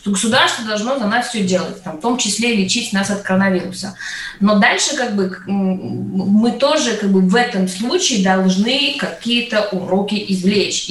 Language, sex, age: Russian, female, 20-39